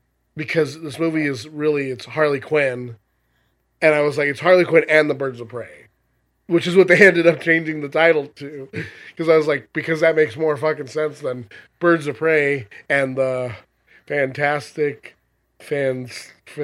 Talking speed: 175 wpm